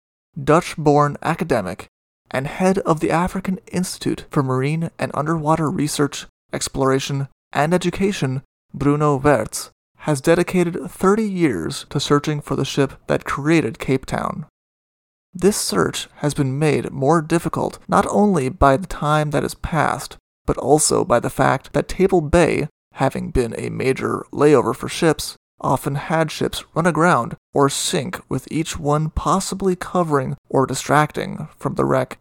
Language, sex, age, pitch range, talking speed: English, male, 30-49, 140-175 Hz, 145 wpm